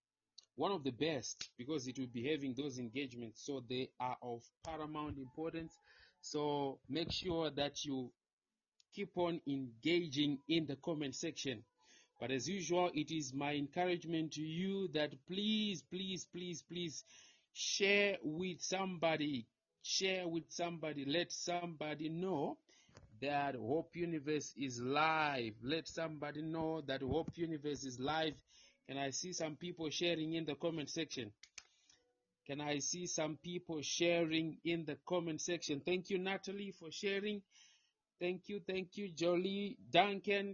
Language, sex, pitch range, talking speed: English, male, 145-180 Hz, 140 wpm